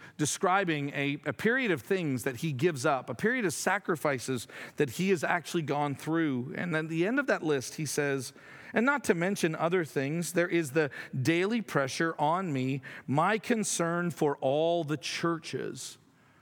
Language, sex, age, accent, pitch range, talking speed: English, male, 40-59, American, 135-170 Hz, 180 wpm